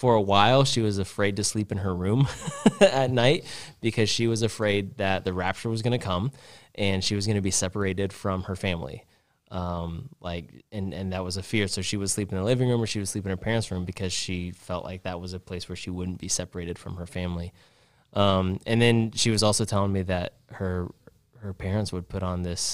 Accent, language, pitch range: American, English, 90-110 Hz